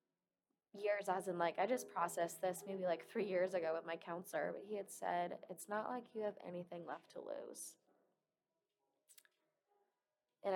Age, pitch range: 20-39, 180-210 Hz